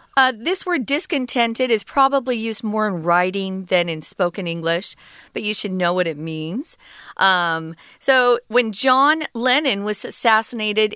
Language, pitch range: Chinese, 190-260 Hz